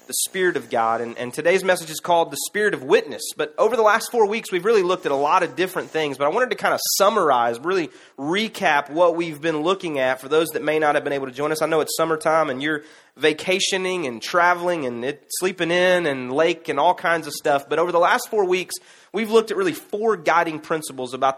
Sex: male